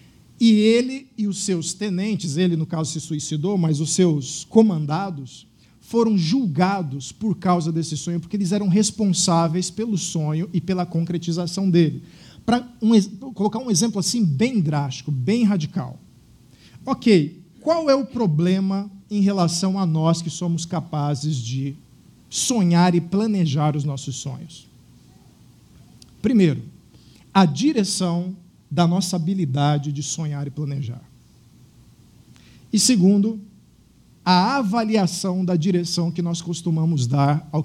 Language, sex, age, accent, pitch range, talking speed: Portuguese, male, 50-69, Brazilian, 155-200 Hz, 130 wpm